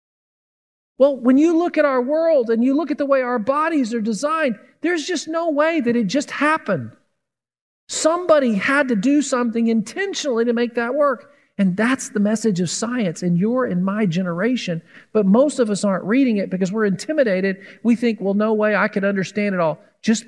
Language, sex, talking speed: English, male, 200 wpm